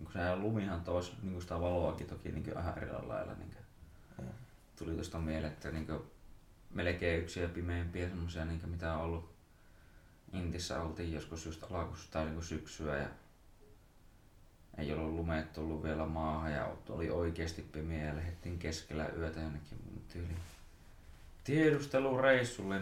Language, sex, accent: Finnish, male, native